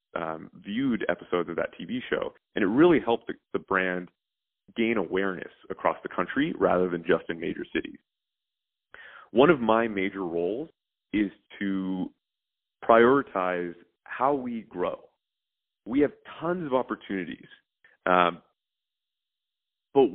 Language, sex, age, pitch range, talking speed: English, male, 30-49, 90-115 Hz, 130 wpm